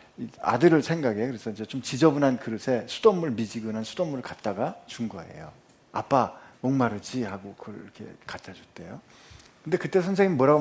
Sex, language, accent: male, Korean, native